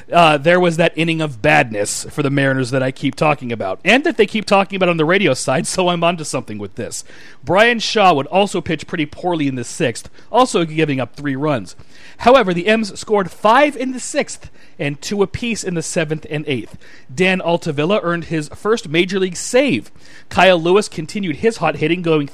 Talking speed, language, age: 210 wpm, English, 30-49